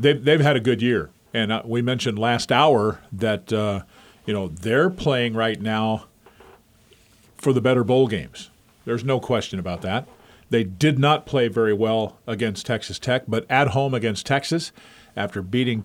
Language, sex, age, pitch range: English, male, 40-59, 115-135 Hz